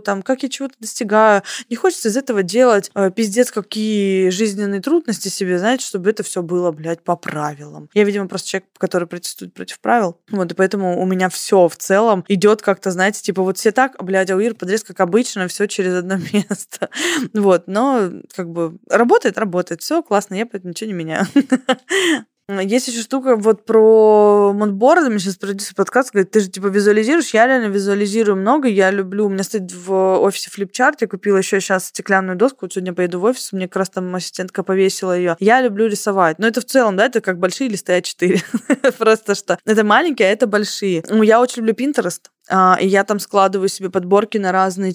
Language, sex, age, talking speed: Russian, female, 20-39, 195 wpm